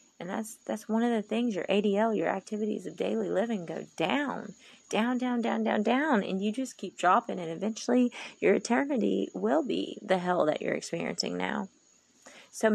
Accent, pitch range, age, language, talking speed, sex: American, 195-260 Hz, 30-49, English, 185 wpm, female